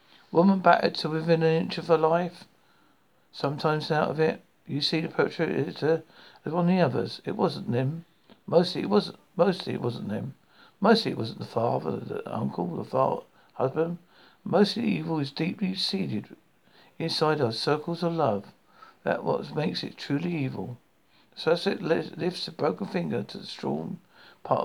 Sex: male